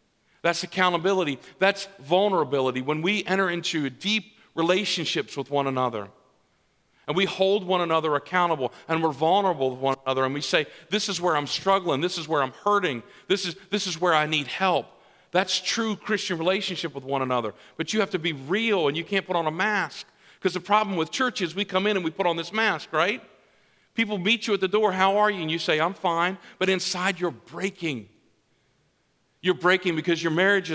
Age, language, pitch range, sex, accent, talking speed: 50-69, English, 160-200 Hz, male, American, 205 wpm